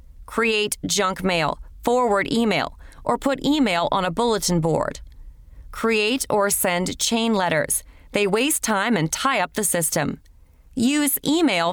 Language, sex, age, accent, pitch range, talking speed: English, female, 30-49, American, 185-250 Hz, 140 wpm